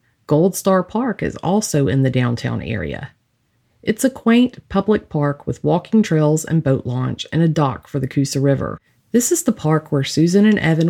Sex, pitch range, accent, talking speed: female, 135-180 Hz, American, 195 wpm